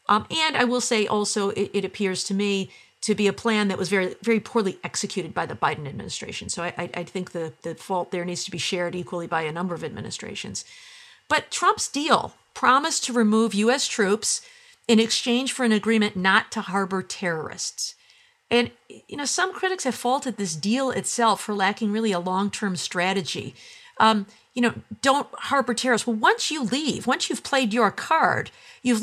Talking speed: 190 wpm